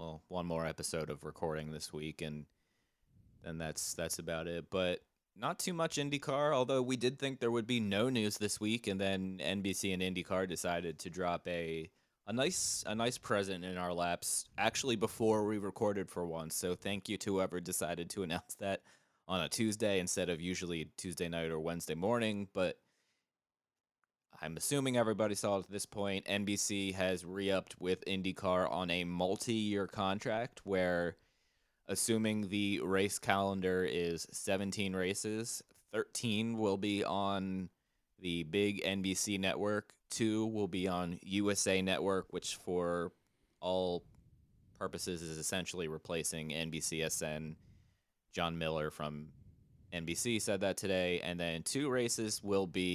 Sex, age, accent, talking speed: male, 20-39, American, 150 wpm